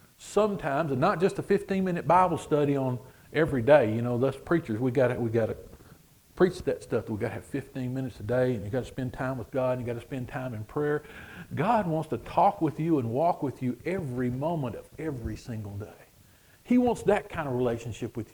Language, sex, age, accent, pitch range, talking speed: English, male, 50-69, American, 115-160 Hz, 225 wpm